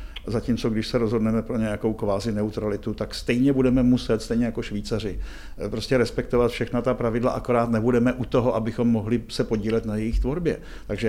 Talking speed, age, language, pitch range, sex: 175 wpm, 50-69, Czech, 105-120 Hz, male